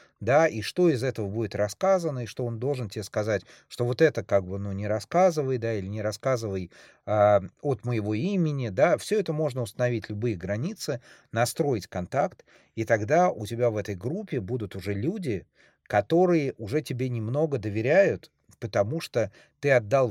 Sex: male